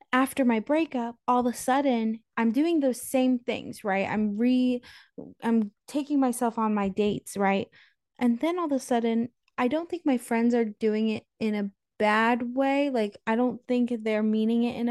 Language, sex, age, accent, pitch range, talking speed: English, female, 20-39, American, 225-275 Hz, 195 wpm